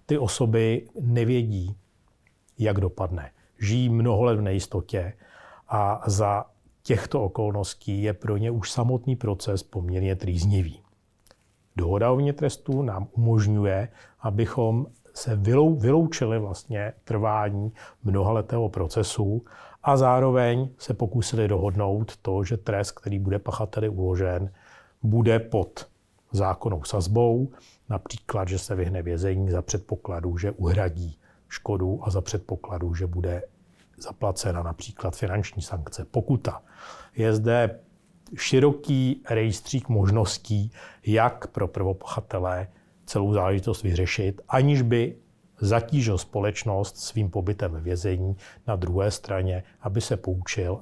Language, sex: Czech, male